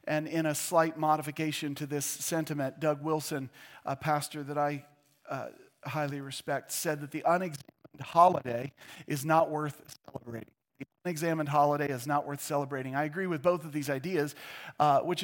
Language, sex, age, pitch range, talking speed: English, male, 40-59, 150-175 Hz, 165 wpm